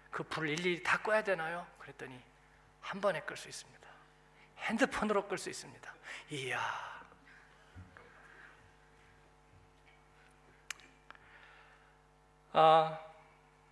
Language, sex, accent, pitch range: Korean, male, native, 160-230 Hz